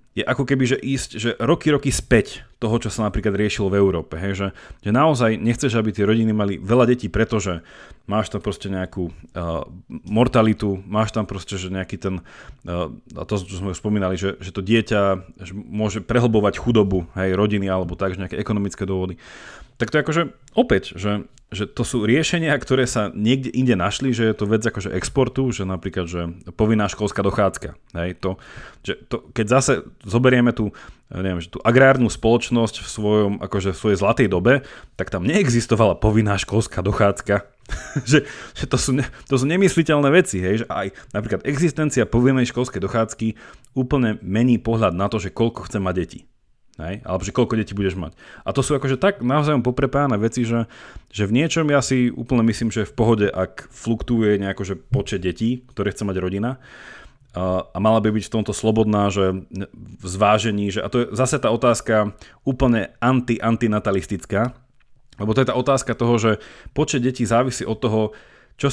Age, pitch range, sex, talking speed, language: 30-49, 100-125 Hz, male, 180 wpm, Slovak